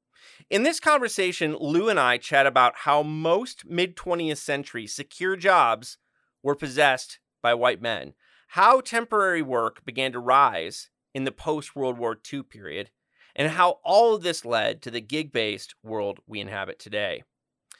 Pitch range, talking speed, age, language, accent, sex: 130-205 Hz, 150 wpm, 30-49, English, American, male